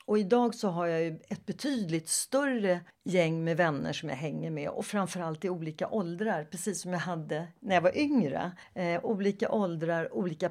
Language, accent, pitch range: Swedish, native, 175-230 Hz